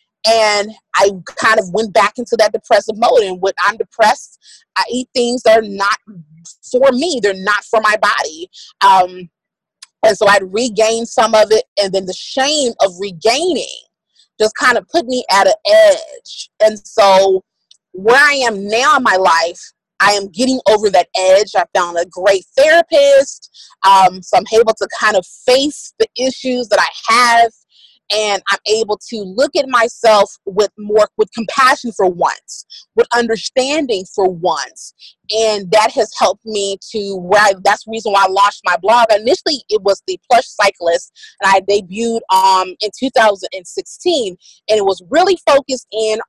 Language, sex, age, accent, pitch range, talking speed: English, female, 30-49, American, 195-255 Hz, 170 wpm